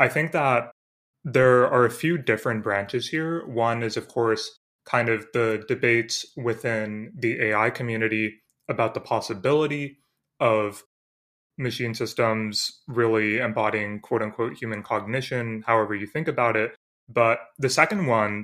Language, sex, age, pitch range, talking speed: English, male, 20-39, 110-120 Hz, 140 wpm